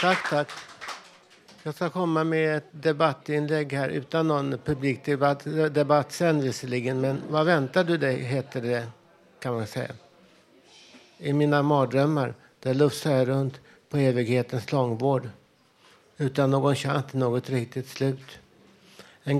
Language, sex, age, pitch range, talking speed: Swedish, male, 60-79, 130-145 Hz, 125 wpm